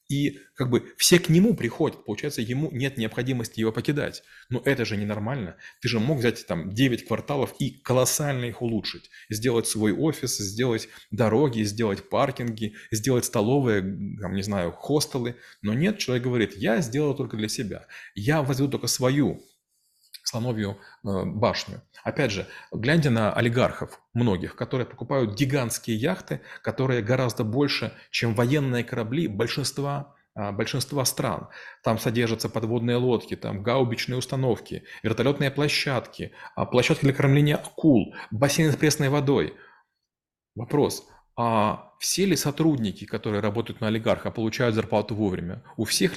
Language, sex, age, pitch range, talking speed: Russian, male, 30-49, 110-135 Hz, 135 wpm